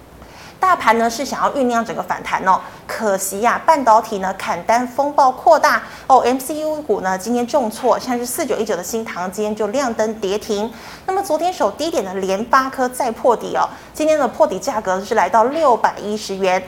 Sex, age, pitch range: female, 20-39, 210-280 Hz